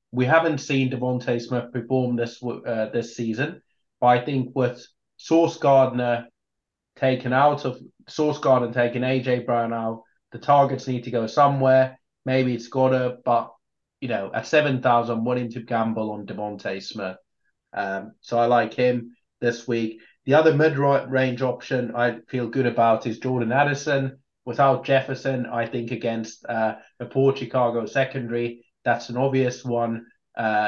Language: English